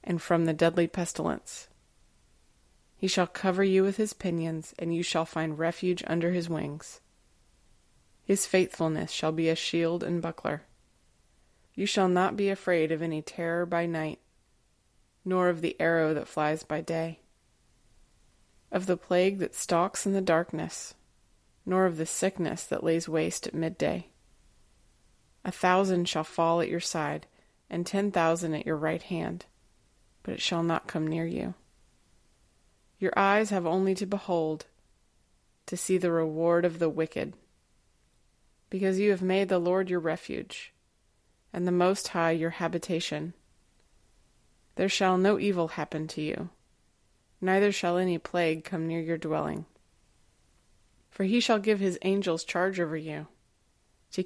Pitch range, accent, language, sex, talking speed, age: 160-185 Hz, American, English, female, 150 wpm, 20-39